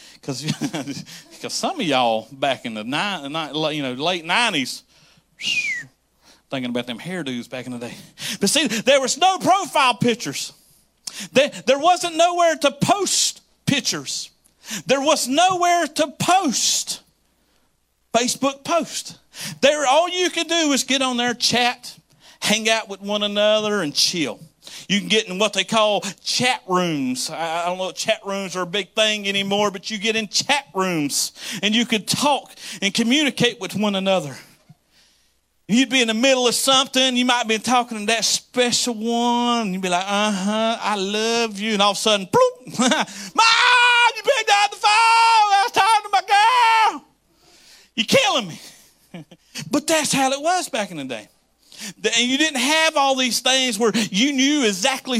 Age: 40-59